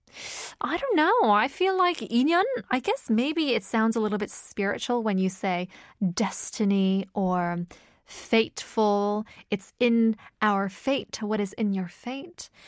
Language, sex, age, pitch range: Korean, female, 20-39, 195-265 Hz